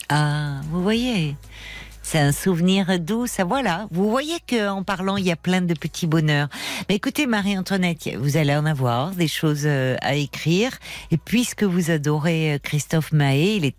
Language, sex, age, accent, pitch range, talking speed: French, female, 50-69, French, 155-200 Hz, 175 wpm